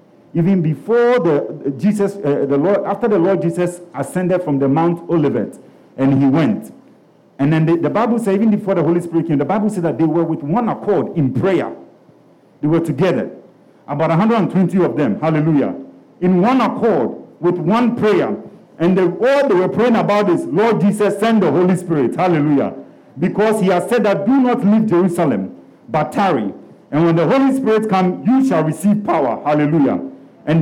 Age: 50-69